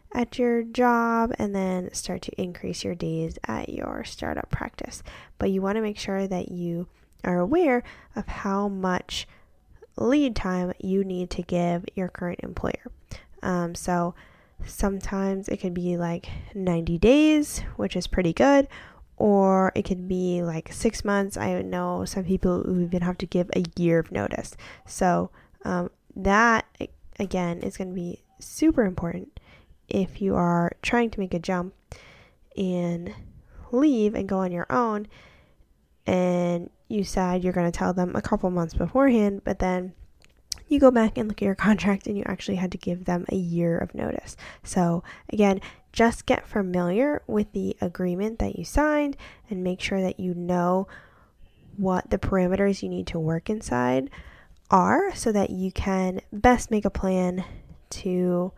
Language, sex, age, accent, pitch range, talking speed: English, female, 10-29, American, 175-210 Hz, 165 wpm